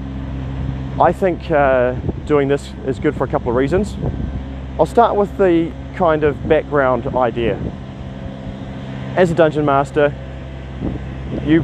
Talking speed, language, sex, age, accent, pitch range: 130 wpm, English, male, 30-49, Australian, 110-150 Hz